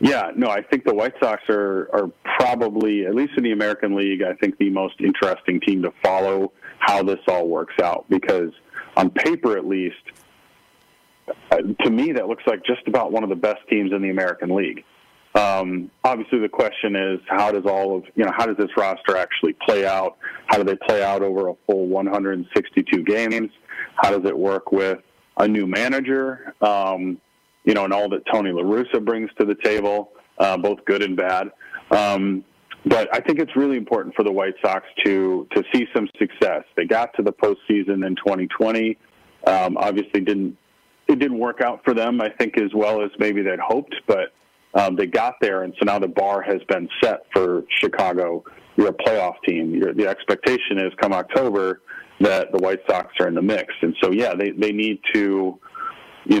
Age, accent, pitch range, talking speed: 40-59, American, 95-110 Hz, 195 wpm